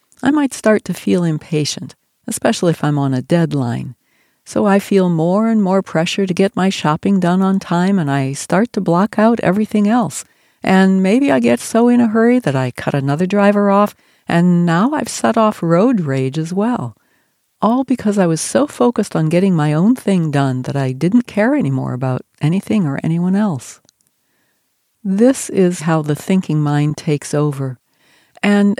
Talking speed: 185 wpm